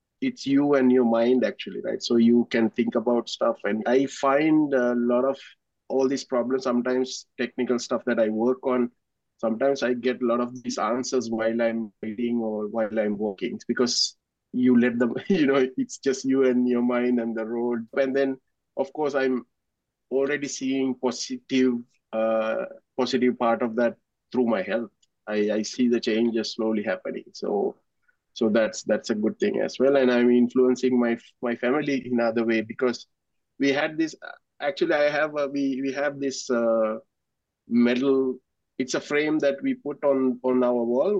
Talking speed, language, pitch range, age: 180 wpm, English, 120-135 Hz, 20-39